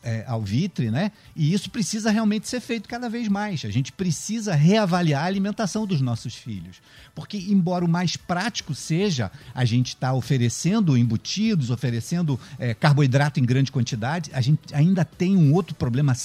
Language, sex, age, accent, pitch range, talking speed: Portuguese, male, 50-69, Brazilian, 125-180 Hz, 175 wpm